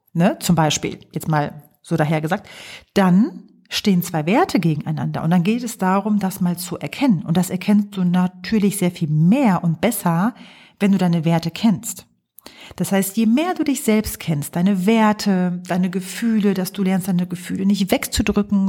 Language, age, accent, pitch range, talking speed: German, 40-59, German, 175-210 Hz, 175 wpm